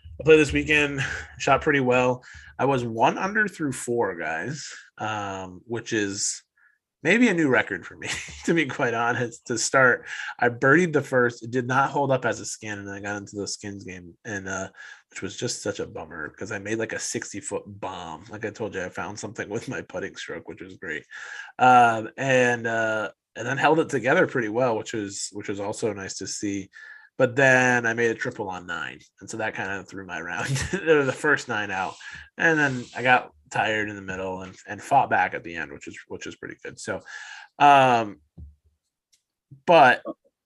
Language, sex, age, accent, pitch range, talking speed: English, male, 20-39, American, 100-130 Hz, 210 wpm